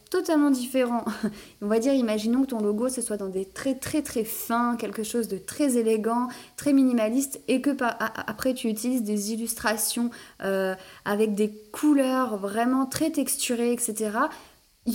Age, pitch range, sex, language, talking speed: 20-39, 210-255 Hz, female, French, 160 wpm